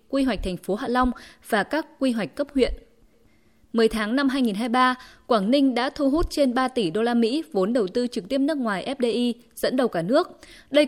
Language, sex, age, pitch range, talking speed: Vietnamese, female, 20-39, 210-270 Hz, 220 wpm